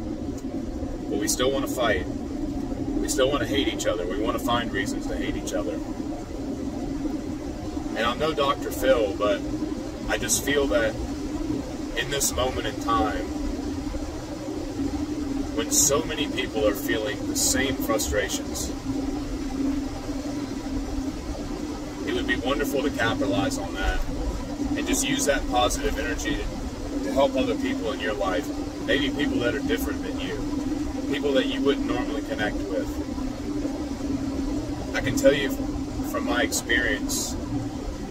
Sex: male